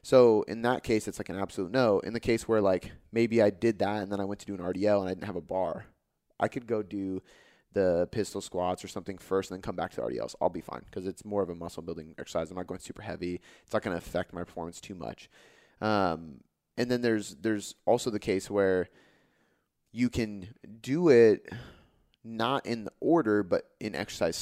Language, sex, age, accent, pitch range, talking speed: English, male, 30-49, American, 95-115 Hz, 230 wpm